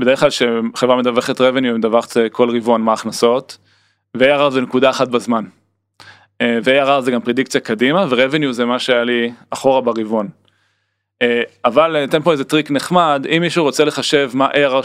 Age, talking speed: 20-39, 160 wpm